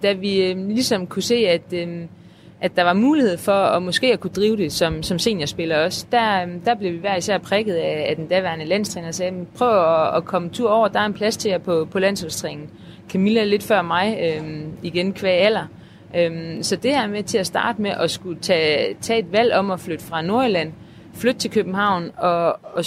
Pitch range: 170-215 Hz